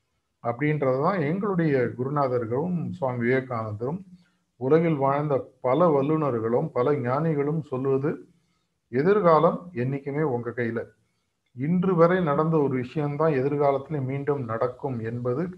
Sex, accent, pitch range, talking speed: male, native, 120-160 Hz, 100 wpm